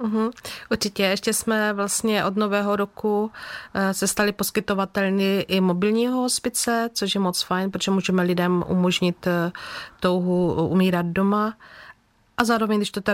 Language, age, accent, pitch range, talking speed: Czech, 30-49, native, 175-200 Hz, 135 wpm